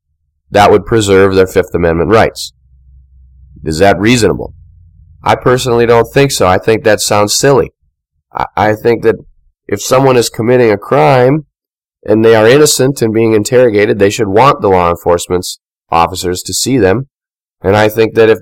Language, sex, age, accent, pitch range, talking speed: English, male, 30-49, American, 85-115 Hz, 170 wpm